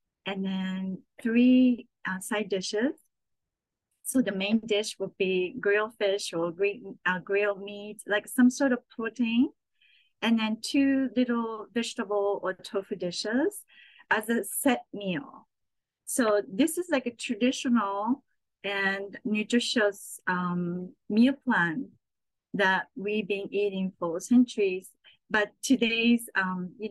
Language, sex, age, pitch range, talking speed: English, female, 30-49, 190-235 Hz, 125 wpm